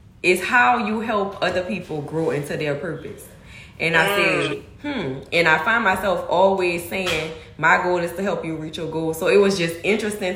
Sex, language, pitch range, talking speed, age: female, English, 155-190 Hz, 195 wpm, 10-29